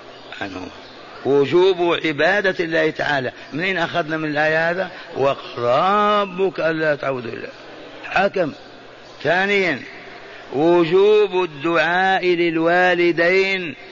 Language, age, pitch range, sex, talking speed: Arabic, 50-69, 145-175 Hz, male, 80 wpm